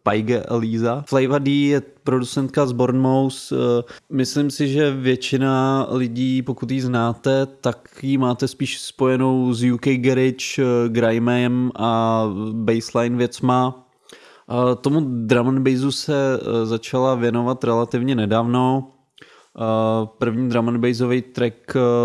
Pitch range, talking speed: 115-130 Hz, 110 wpm